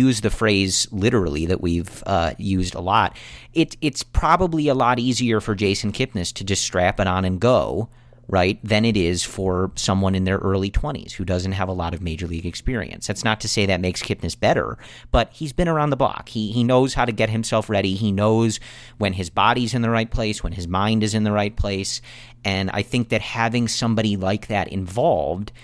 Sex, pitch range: male, 95-120 Hz